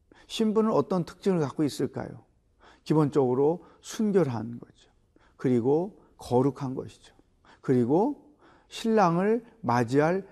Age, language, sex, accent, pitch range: 40-59, Korean, male, native, 140-185 Hz